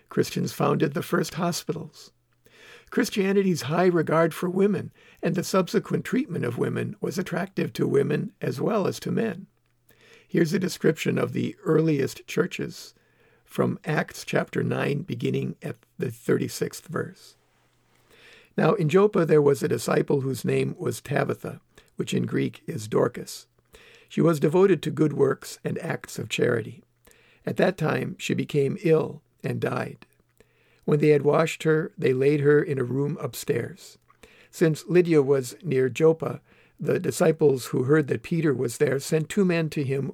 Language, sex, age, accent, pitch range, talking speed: English, male, 60-79, American, 145-170 Hz, 155 wpm